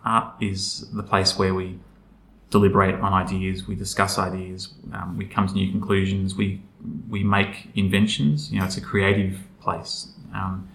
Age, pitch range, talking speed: 20-39, 95-100 Hz, 160 wpm